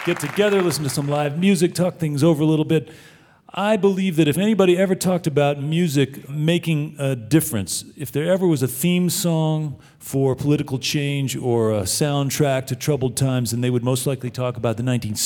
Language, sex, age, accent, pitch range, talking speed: English, male, 40-59, American, 120-155 Hz, 195 wpm